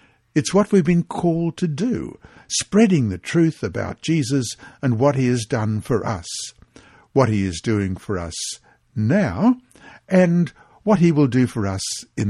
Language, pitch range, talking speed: English, 105-160 Hz, 165 wpm